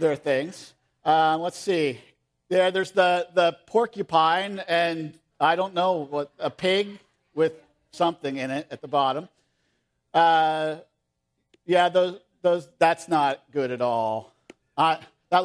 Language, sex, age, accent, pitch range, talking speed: English, male, 50-69, American, 145-195 Hz, 135 wpm